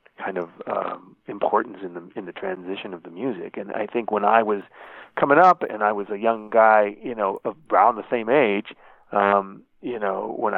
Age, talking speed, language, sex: 40-59, 210 wpm, English, male